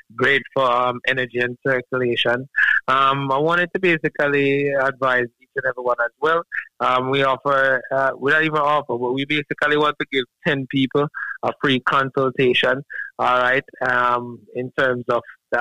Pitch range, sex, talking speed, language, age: 120-135 Hz, male, 165 wpm, English, 30-49